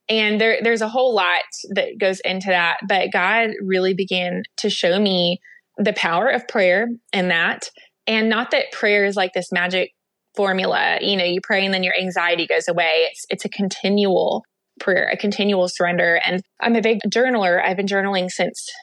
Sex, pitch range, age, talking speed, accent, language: female, 185-235 Hz, 20-39, 185 wpm, American, English